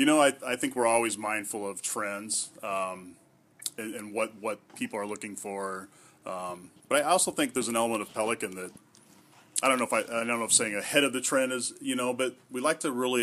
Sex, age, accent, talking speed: male, 30-49, American, 235 wpm